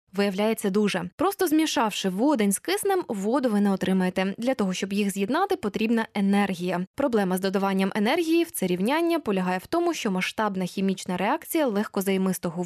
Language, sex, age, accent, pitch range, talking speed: Ukrainian, female, 10-29, native, 200-285 Hz, 155 wpm